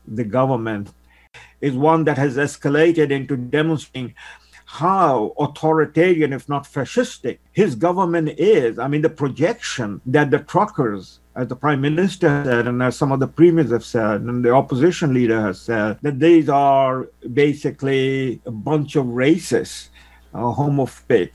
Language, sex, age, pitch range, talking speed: English, male, 50-69, 125-160 Hz, 150 wpm